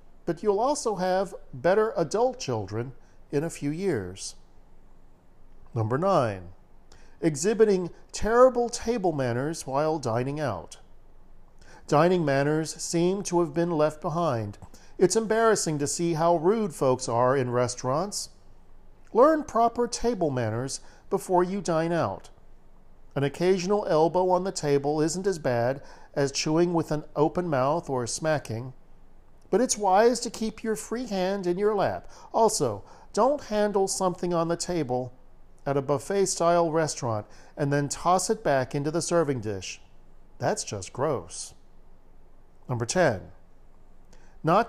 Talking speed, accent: 135 wpm, American